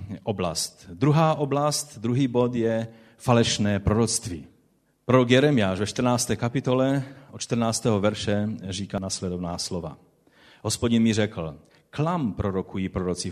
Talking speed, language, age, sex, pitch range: 115 wpm, Czech, 40-59, male, 100-135 Hz